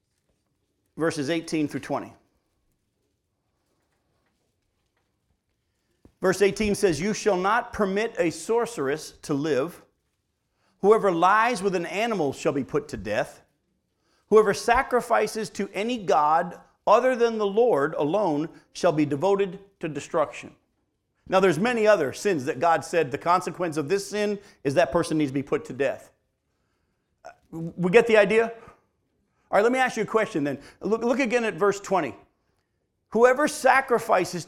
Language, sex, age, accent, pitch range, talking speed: English, male, 50-69, American, 180-245 Hz, 145 wpm